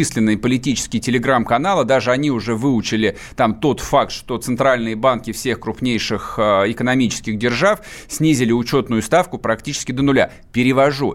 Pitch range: 110-140 Hz